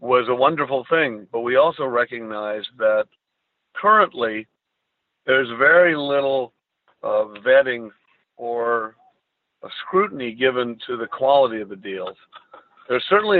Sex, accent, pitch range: male, American, 110-130 Hz